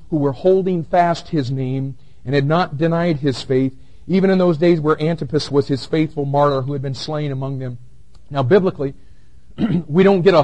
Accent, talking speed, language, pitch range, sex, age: American, 195 wpm, English, 140-185 Hz, male, 50-69